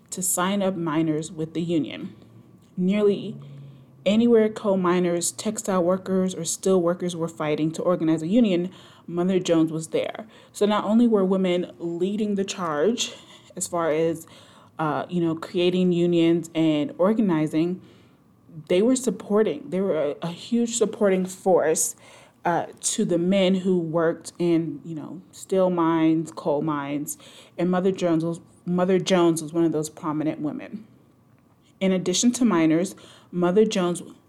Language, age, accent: English, 30-49, American